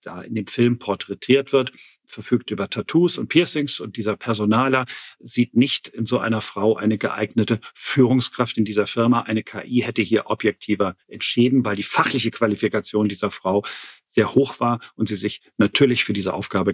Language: German